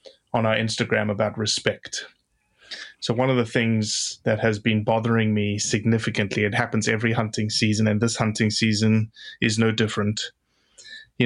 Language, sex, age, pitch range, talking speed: English, male, 20-39, 110-125 Hz, 145 wpm